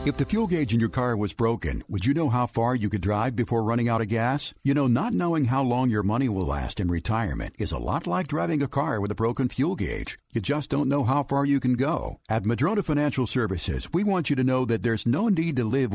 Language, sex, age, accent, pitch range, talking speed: English, male, 60-79, American, 110-140 Hz, 265 wpm